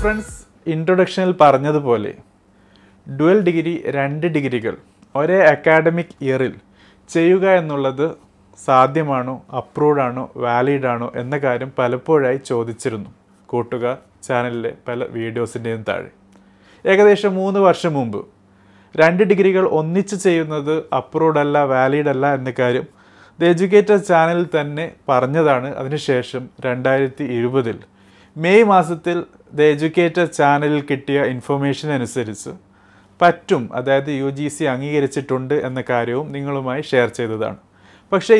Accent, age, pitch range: native, 30-49, 120-170 Hz